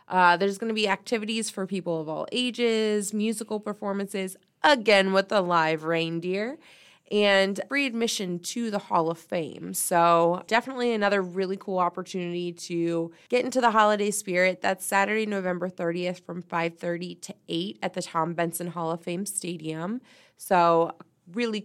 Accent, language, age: American, English, 20-39